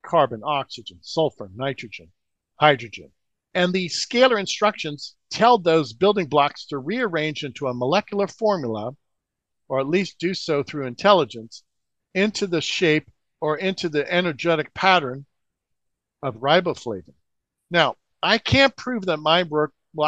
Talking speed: 130 wpm